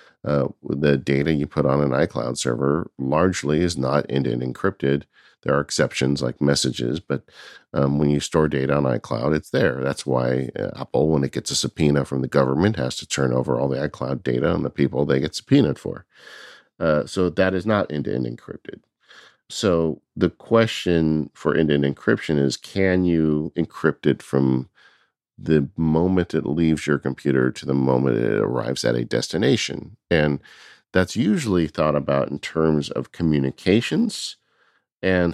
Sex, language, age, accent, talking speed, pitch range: male, English, 50-69, American, 170 wpm, 65-80 Hz